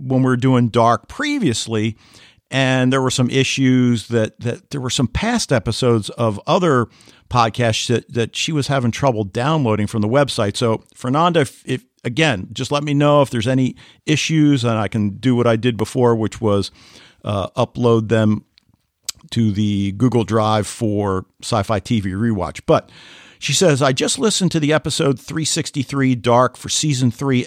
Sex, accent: male, American